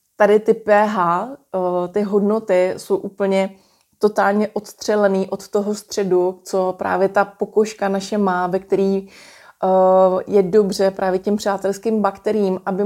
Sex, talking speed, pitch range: female, 125 wpm, 185-205 Hz